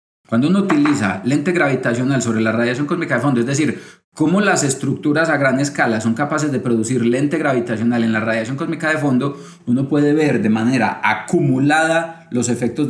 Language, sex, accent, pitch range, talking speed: Spanish, male, Colombian, 120-165 Hz, 180 wpm